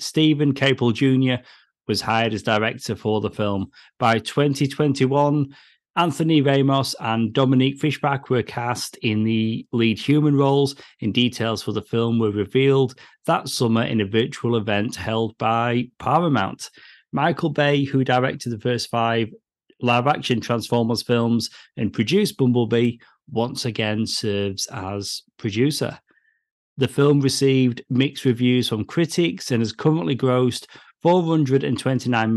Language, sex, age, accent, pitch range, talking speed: English, male, 30-49, British, 115-140 Hz, 130 wpm